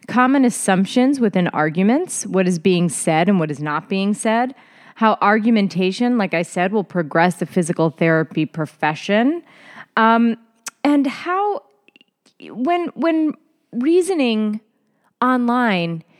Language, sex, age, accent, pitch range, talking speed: English, female, 30-49, American, 190-260 Hz, 120 wpm